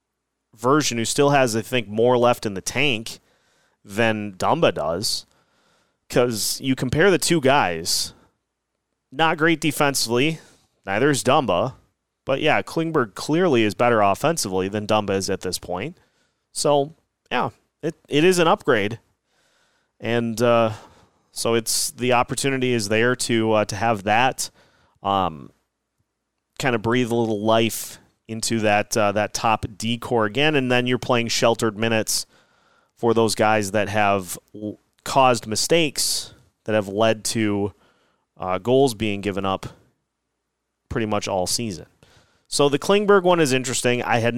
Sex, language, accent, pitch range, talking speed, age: male, English, American, 105-130 Hz, 145 wpm, 30-49